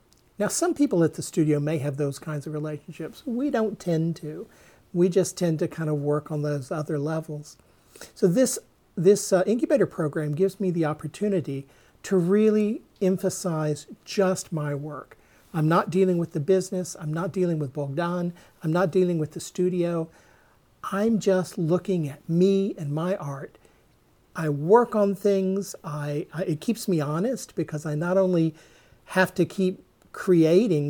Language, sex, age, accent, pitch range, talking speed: English, male, 50-69, American, 150-185 Hz, 165 wpm